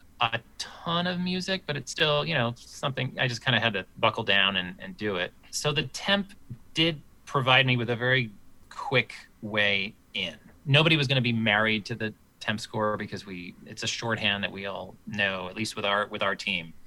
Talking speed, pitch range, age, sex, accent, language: 215 wpm, 95-130 Hz, 30-49, male, American, English